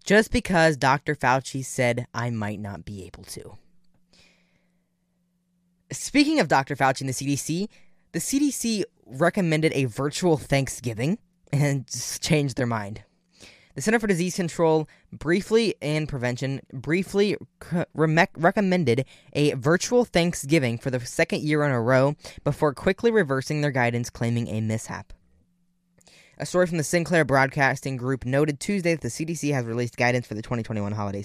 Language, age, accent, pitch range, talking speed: English, 10-29, American, 120-170 Hz, 145 wpm